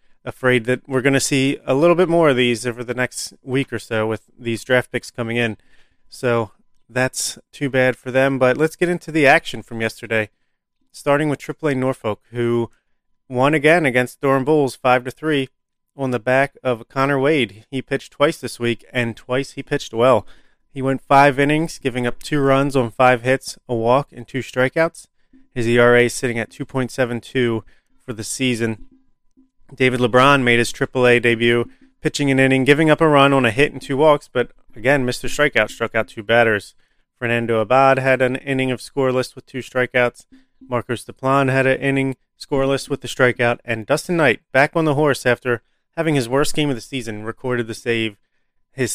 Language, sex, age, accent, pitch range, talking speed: English, male, 30-49, American, 120-140 Hz, 190 wpm